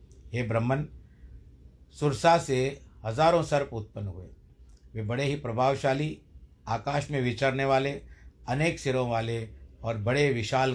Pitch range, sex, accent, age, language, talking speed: 100-130 Hz, male, native, 60-79, Hindi, 125 wpm